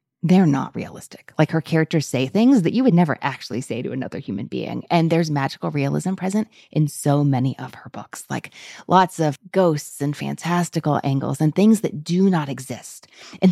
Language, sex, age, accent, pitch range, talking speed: English, female, 20-39, American, 140-185 Hz, 190 wpm